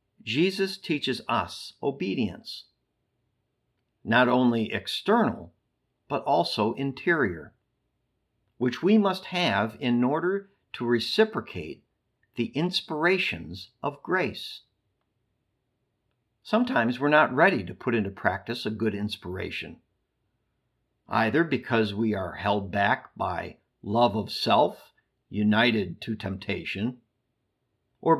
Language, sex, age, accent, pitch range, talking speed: English, male, 50-69, American, 110-150 Hz, 100 wpm